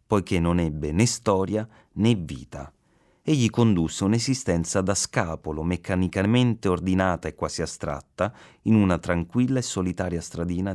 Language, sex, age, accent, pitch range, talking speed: Italian, male, 30-49, native, 80-110 Hz, 130 wpm